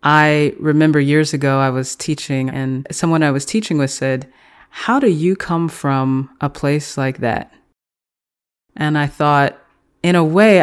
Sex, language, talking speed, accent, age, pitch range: female, English, 165 wpm, American, 30-49, 135-160 Hz